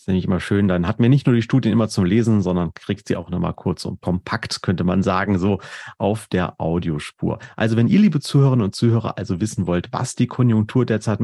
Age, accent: 30-49, German